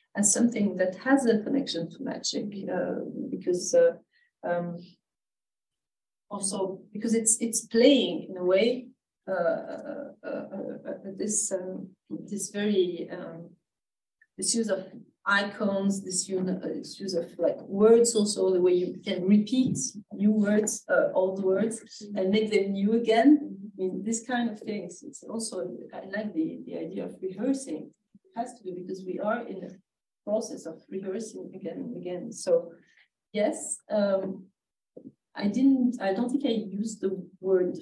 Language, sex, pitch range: English, female, 190-240 Hz